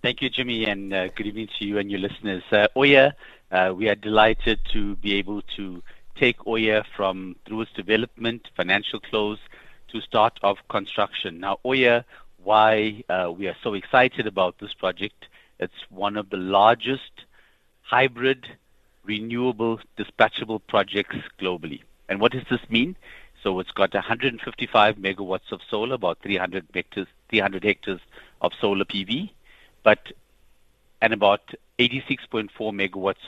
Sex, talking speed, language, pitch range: male, 145 wpm, English, 95-115 Hz